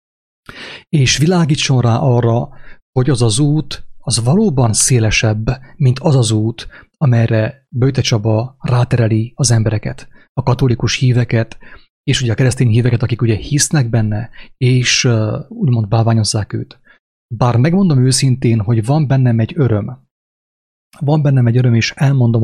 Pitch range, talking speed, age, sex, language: 115-140 Hz, 135 wpm, 30-49, male, English